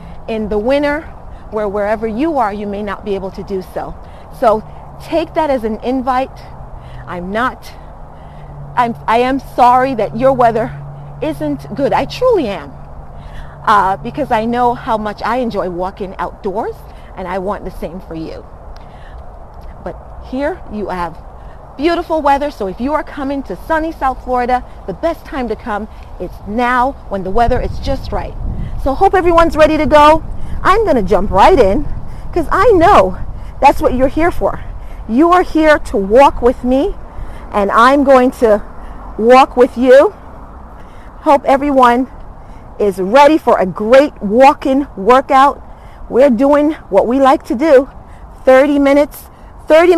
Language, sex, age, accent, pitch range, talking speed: English, female, 40-59, American, 205-290 Hz, 160 wpm